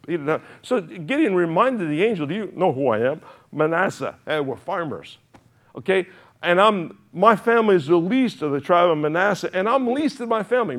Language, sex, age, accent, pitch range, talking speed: English, male, 60-79, American, 115-160 Hz, 190 wpm